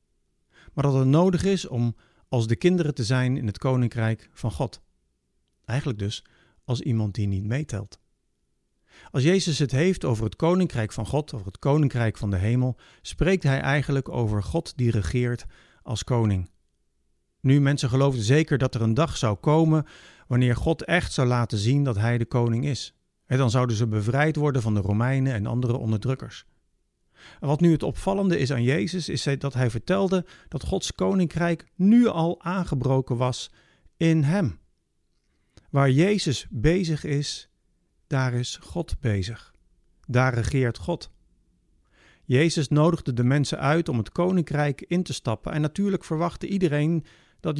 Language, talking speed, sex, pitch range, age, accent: Dutch, 160 wpm, male, 110-160 Hz, 50-69, Dutch